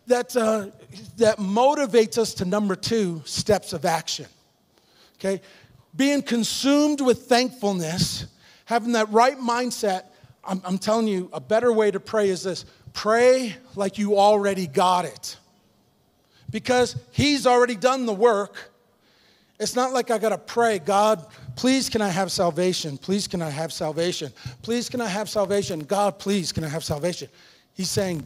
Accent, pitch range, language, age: American, 185-220 Hz, English, 40-59